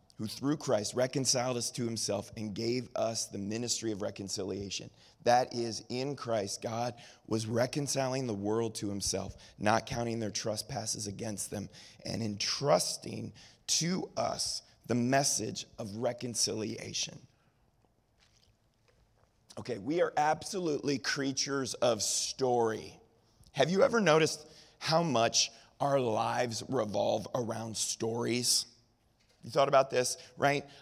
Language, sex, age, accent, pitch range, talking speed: English, male, 30-49, American, 115-150 Hz, 120 wpm